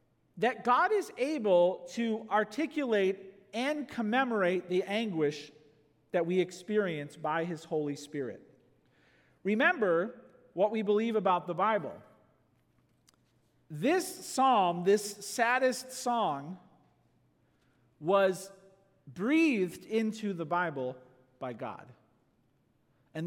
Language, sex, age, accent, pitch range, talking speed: English, male, 40-59, American, 170-240 Hz, 95 wpm